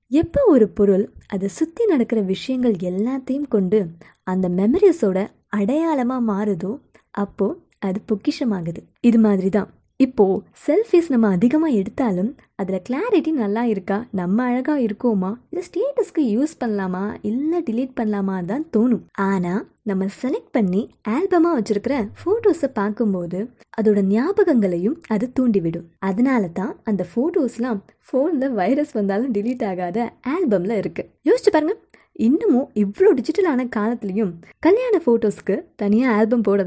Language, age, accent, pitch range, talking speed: Tamil, 20-39, native, 200-275 Hz, 120 wpm